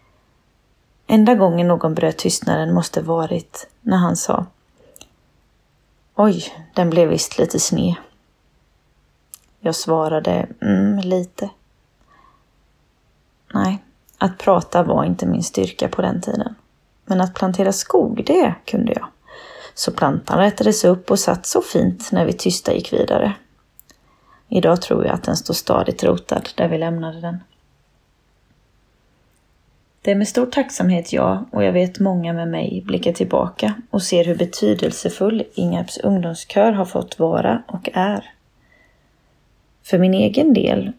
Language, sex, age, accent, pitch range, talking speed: Swedish, female, 30-49, native, 170-205 Hz, 135 wpm